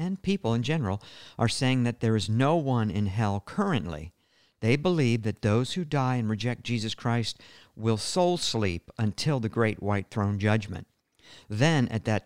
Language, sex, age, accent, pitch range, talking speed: English, male, 50-69, American, 105-130 Hz, 175 wpm